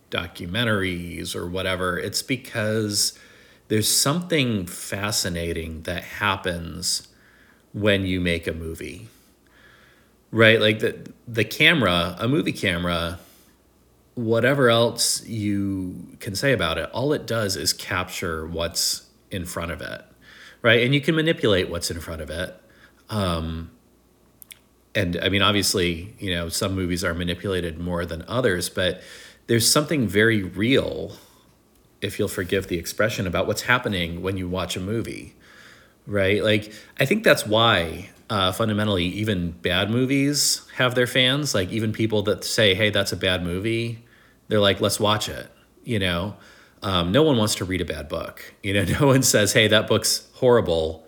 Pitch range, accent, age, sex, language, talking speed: 90-115 Hz, American, 40-59, male, English, 155 wpm